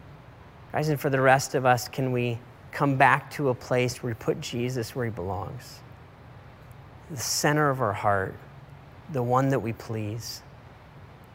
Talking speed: 160 wpm